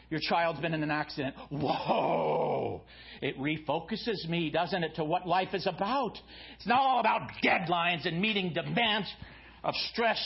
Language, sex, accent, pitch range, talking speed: English, male, American, 175-240 Hz, 160 wpm